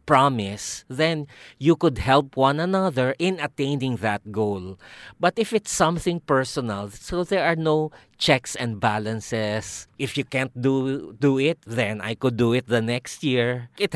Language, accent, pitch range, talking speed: English, Filipino, 115-150 Hz, 165 wpm